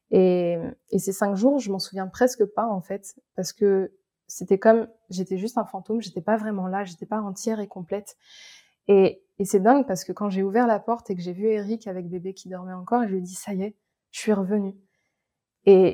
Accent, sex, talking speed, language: French, female, 230 wpm, French